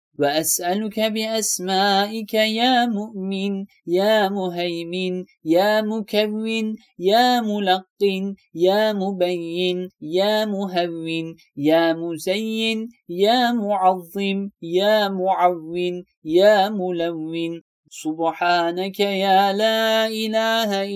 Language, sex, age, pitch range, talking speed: Turkish, male, 30-49, 175-215 Hz, 75 wpm